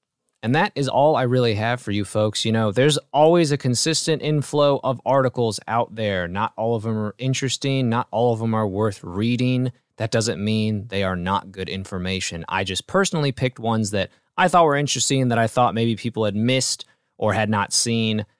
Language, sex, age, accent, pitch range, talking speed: English, male, 20-39, American, 95-130 Hz, 210 wpm